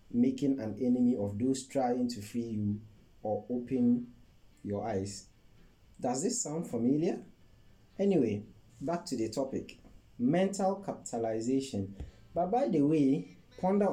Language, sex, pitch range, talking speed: English, male, 110-155 Hz, 125 wpm